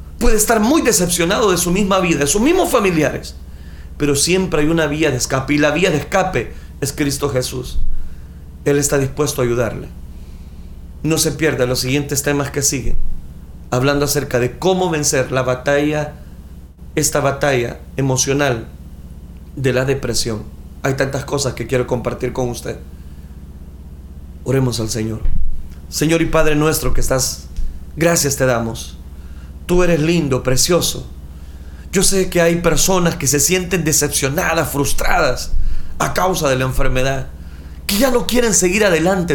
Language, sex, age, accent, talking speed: Spanish, male, 40-59, Mexican, 150 wpm